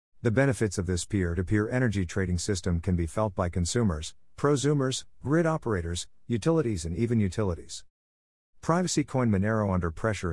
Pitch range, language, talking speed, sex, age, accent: 90-115 Hz, English, 145 wpm, male, 50-69, American